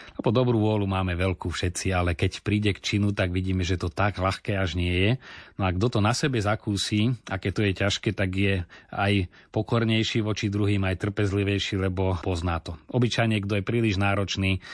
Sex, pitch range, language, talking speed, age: male, 95-105 Hz, Slovak, 195 wpm, 30-49